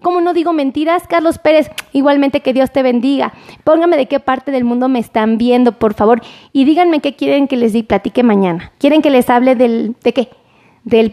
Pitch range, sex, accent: 235-295 Hz, female, Mexican